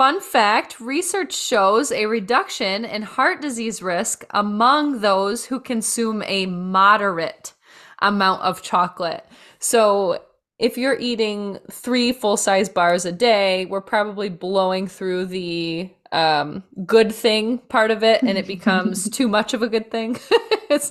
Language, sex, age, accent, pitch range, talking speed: English, female, 20-39, American, 185-230 Hz, 140 wpm